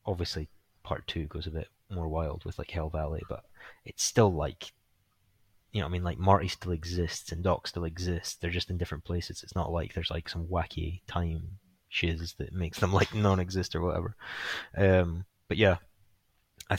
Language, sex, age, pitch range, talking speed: English, male, 20-39, 90-105 Hz, 190 wpm